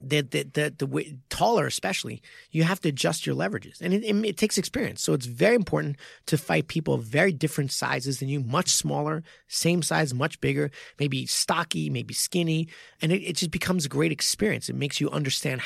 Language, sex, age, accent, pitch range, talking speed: English, male, 30-49, American, 135-180 Hz, 205 wpm